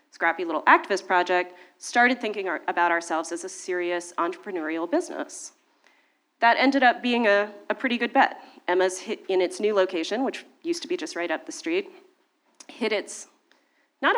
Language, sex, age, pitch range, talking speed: English, female, 30-49, 185-310 Hz, 170 wpm